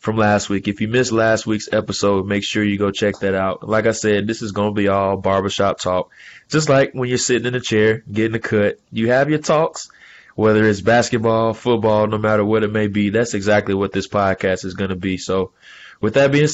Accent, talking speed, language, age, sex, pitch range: American, 235 wpm, English, 20-39, male, 100-115 Hz